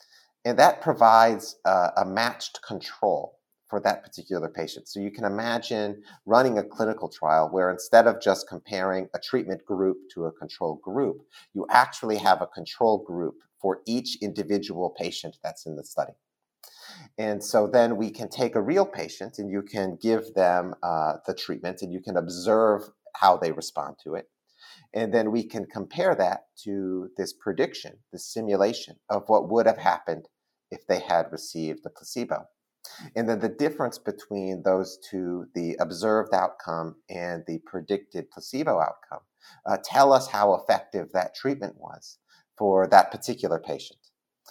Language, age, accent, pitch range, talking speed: English, 40-59, American, 95-115 Hz, 160 wpm